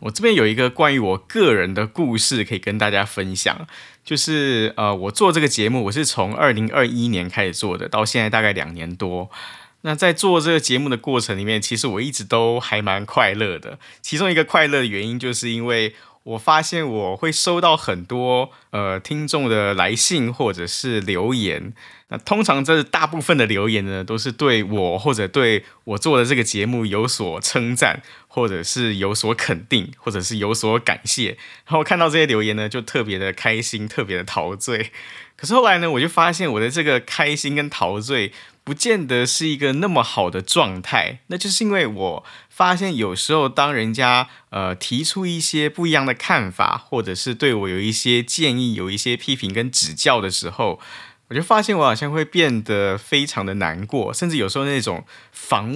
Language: Chinese